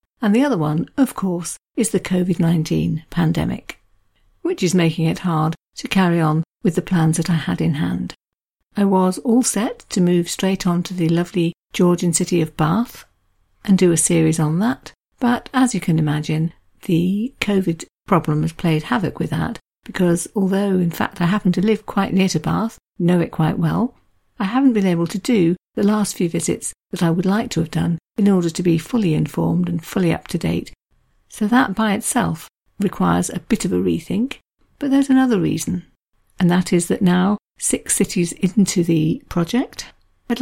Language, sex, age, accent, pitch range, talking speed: English, female, 50-69, British, 170-215 Hz, 190 wpm